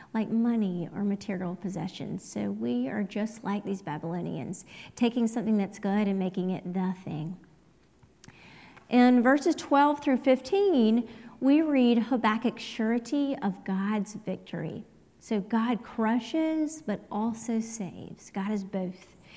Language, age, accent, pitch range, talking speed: English, 40-59, American, 200-250 Hz, 130 wpm